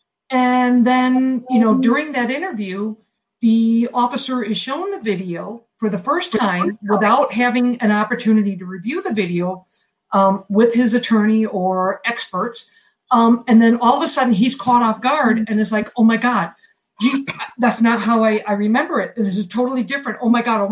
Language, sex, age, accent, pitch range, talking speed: English, female, 50-69, American, 205-255 Hz, 180 wpm